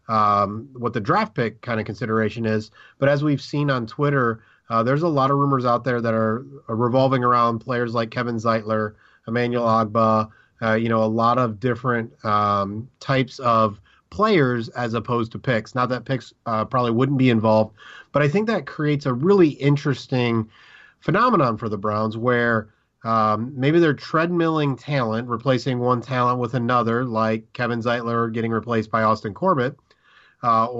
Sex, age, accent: male, 30-49, American